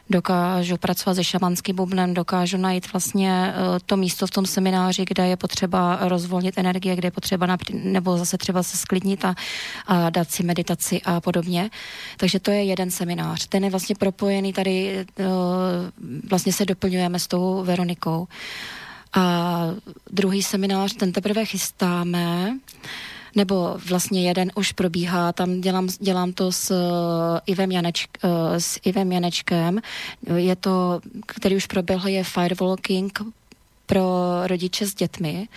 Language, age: Slovak, 20-39